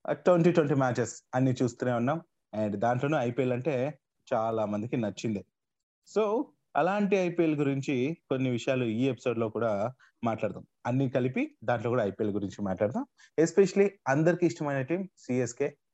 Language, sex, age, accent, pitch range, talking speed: Telugu, male, 30-49, native, 115-150 Hz, 135 wpm